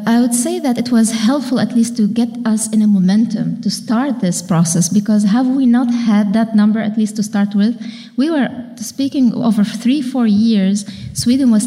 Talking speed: 205 wpm